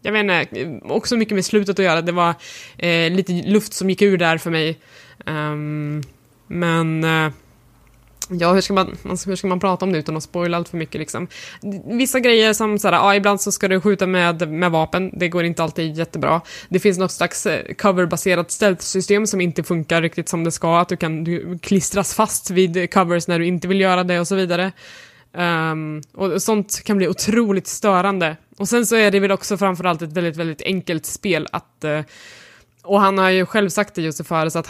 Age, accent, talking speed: 20-39, native, 210 wpm